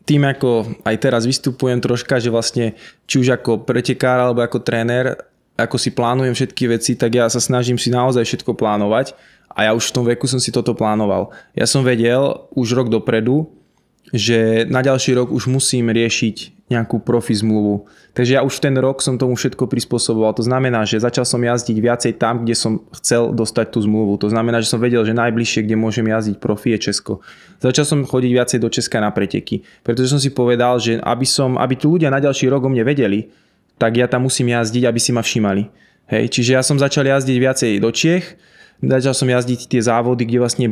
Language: Slovak